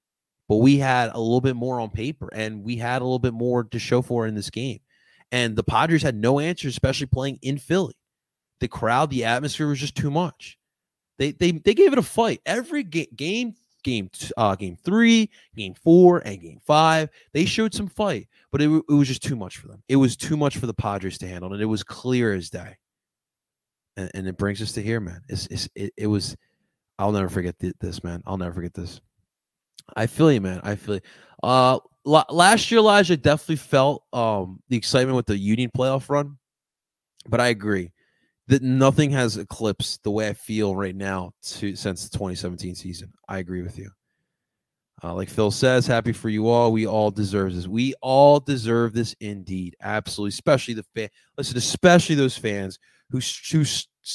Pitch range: 100-135 Hz